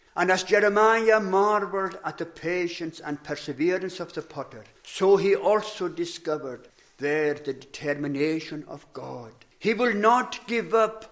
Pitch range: 165-230 Hz